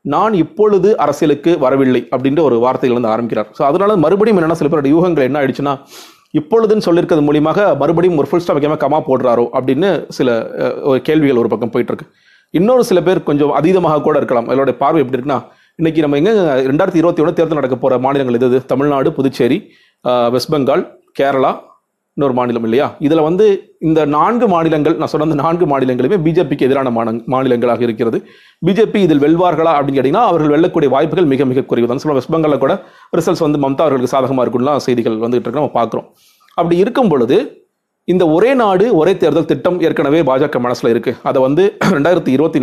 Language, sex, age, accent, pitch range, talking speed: Tamil, male, 30-49, native, 130-175 Hz, 155 wpm